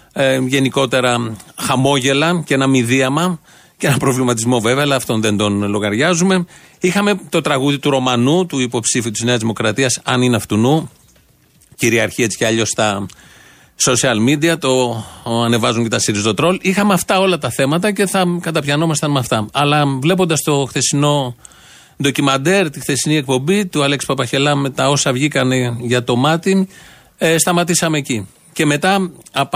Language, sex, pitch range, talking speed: Greek, male, 130-160 Hz, 155 wpm